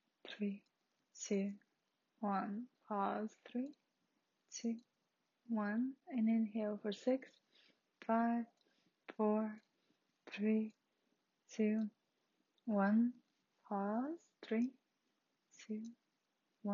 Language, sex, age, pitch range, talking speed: English, female, 20-39, 205-245 Hz, 70 wpm